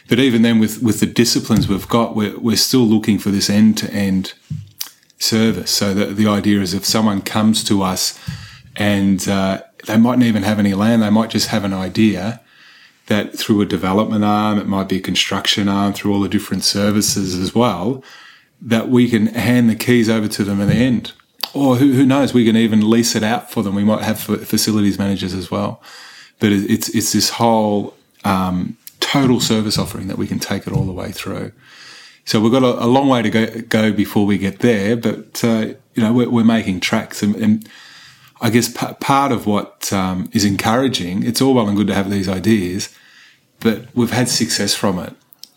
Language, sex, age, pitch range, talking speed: English, male, 30-49, 100-115 Hz, 205 wpm